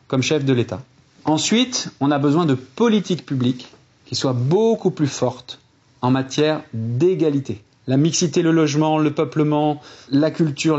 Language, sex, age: French, male, 40-59